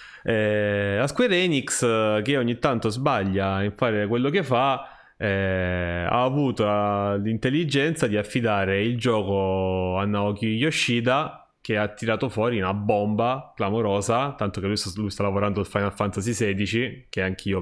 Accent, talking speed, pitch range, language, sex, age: native, 155 wpm, 100-125 Hz, Italian, male, 20-39